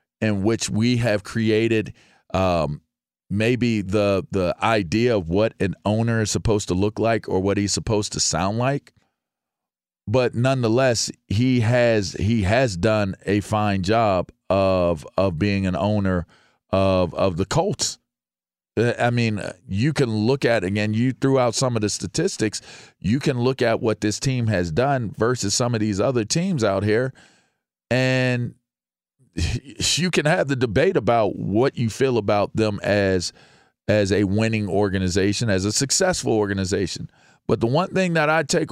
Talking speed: 160 wpm